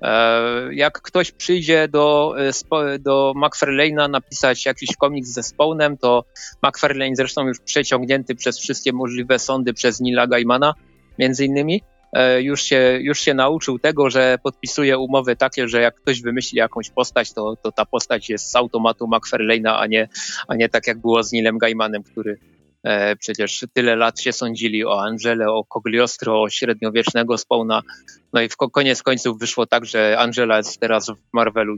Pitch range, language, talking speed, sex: 115-140 Hz, Polish, 160 wpm, male